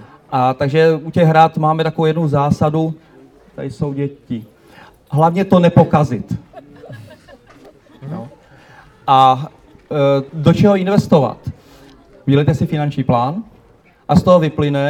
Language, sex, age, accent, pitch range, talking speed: Czech, male, 40-59, native, 140-165 Hz, 115 wpm